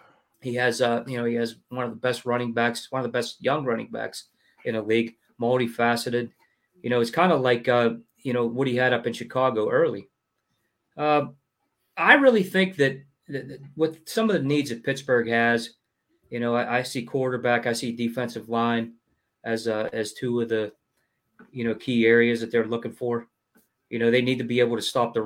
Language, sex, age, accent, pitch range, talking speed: English, male, 30-49, American, 115-140 Hz, 205 wpm